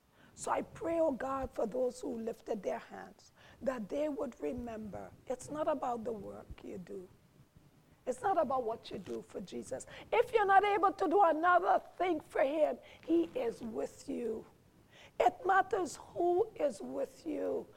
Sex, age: female, 50-69